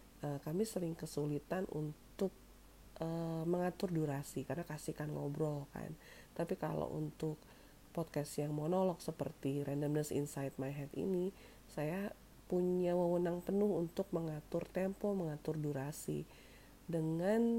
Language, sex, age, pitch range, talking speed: Indonesian, female, 40-59, 145-175 Hz, 115 wpm